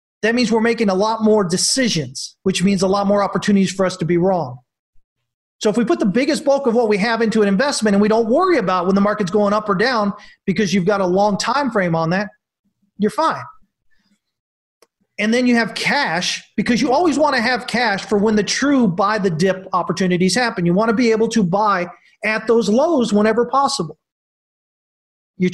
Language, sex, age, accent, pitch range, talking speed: English, male, 40-59, American, 185-235 Hz, 210 wpm